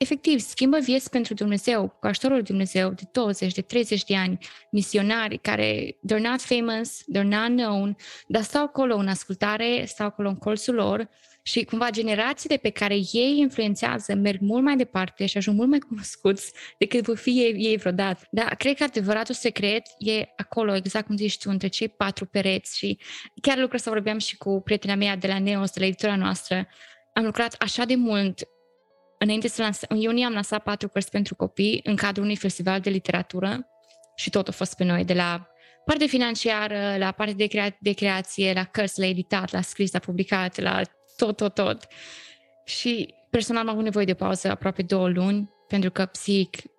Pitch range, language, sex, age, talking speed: 195-235 Hz, Romanian, female, 20-39, 185 wpm